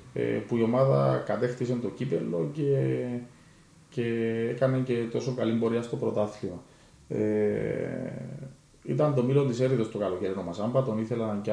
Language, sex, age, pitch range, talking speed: Greek, male, 30-49, 105-130 Hz, 135 wpm